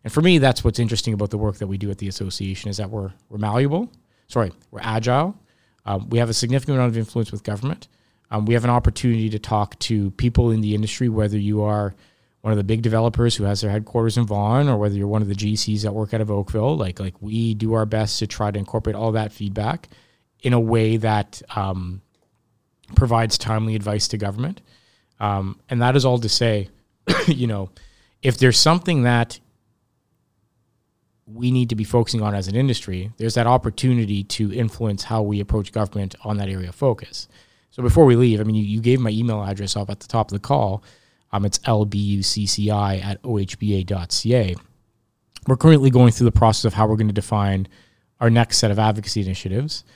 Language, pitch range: English, 105-120 Hz